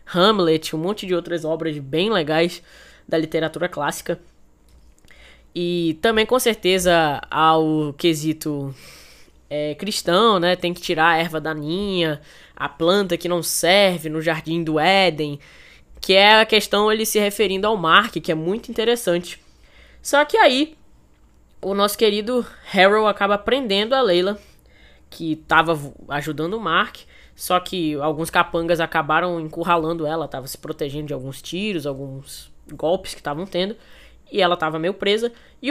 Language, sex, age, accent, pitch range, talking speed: English, female, 10-29, Brazilian, 160-205 Hz, 150 wpm